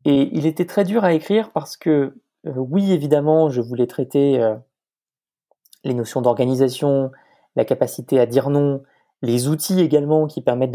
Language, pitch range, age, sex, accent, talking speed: French, 135-175 Hz, 20-39, male, French, 160 wpm